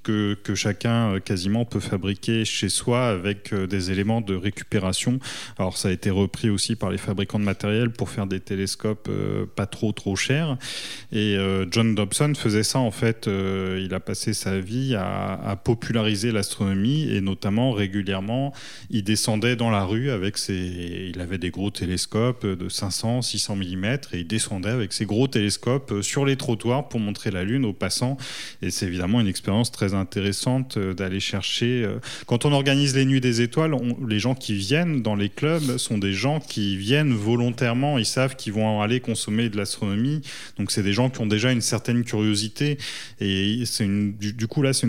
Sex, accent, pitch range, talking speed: male, French, 100-125 Hz, 185 wpm